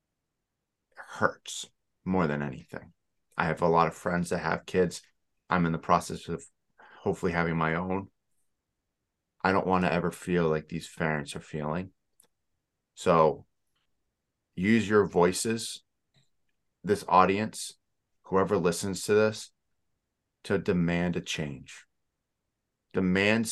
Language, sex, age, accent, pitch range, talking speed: English, male, 30-49, American, 85-110 Hz, 120 wpm